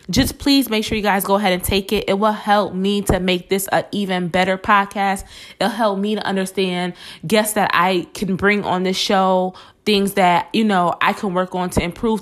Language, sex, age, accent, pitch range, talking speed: English, female, 20-39, American, 175-205 Hz, 220 wpm